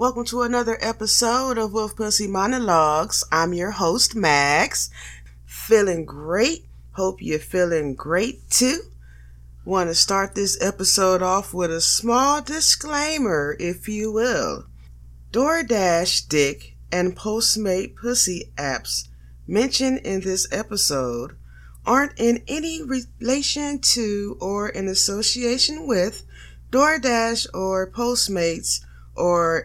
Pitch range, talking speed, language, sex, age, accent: 155-250 Hz, 110 wpm, English, female, 20-39, American